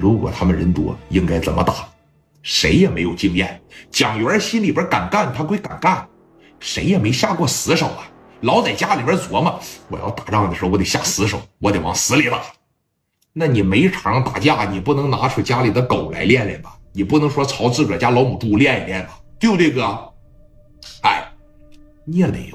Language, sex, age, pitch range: Chinese, male, 50-69, 90-130 Hz